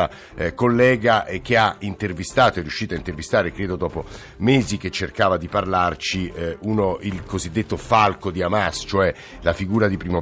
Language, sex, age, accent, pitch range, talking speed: Italian, male, 50-69, native, 90-110 Hz, 155 wpm